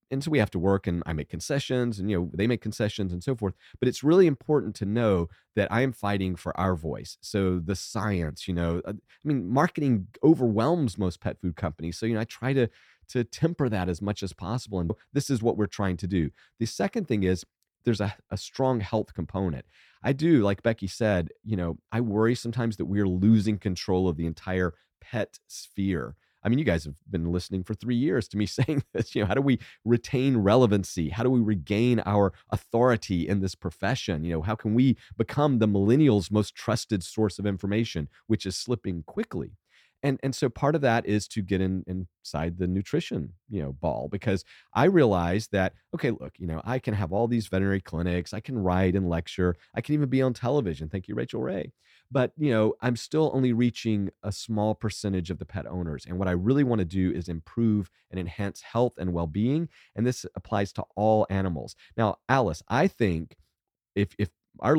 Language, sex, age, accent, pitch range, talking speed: English, male, 40-59, American, 90-120 Hz, 215 wpm